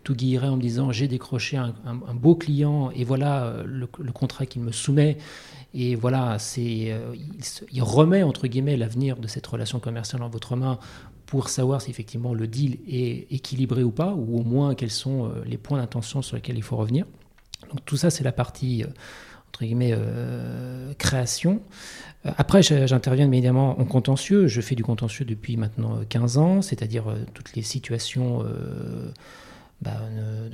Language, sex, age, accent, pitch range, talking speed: French, male, 40-59, French, 115-140 Hz, 180 wpm